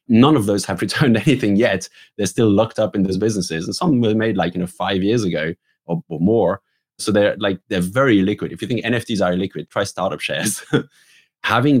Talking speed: 220 wpm